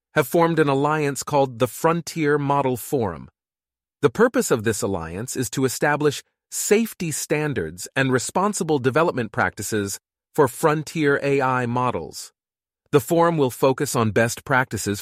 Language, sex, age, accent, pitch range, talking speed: English, male, 40-59, American, 100-130 Hz, 135 wpm